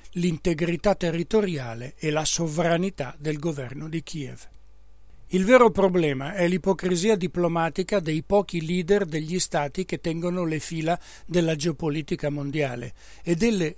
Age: 60-79